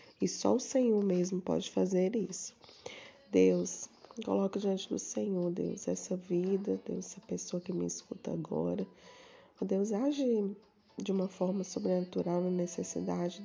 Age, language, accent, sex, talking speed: 20-39, Portuguese, Brazilian, female, 140 wpm